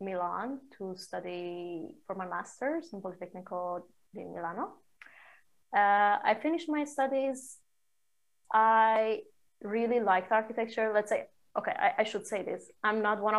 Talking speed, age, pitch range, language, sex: 135 wpm, 20-39, 190-225 Hz, English, female